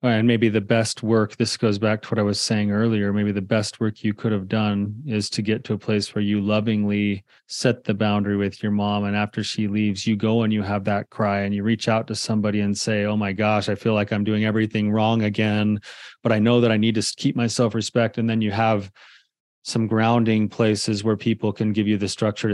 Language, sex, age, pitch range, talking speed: English, male, 30-49, 105-115 Hz, 240 wpm